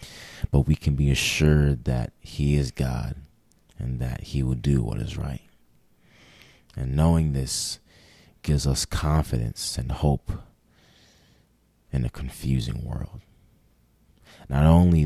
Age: 30-49